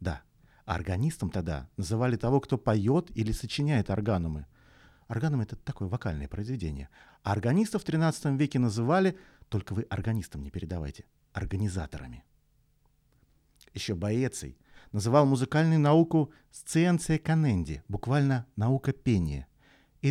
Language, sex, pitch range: Russian, male, 100-145 Hz